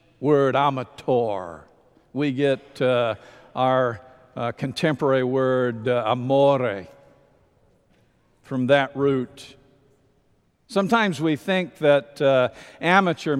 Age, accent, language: 60-79, American, English